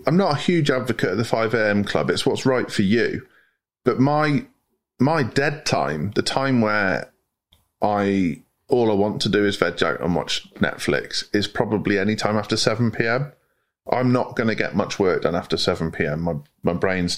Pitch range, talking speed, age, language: 90-115 Hz, 195 wpm, 30-49, English